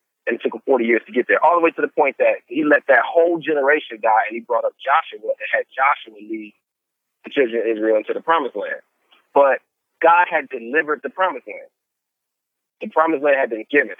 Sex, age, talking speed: male, 30-49, 225 wpm